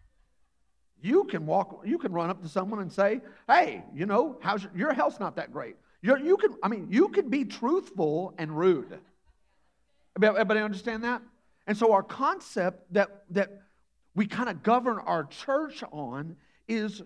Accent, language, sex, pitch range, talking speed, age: American, English, male, 135-215 Hz, 170 wpm, 50-69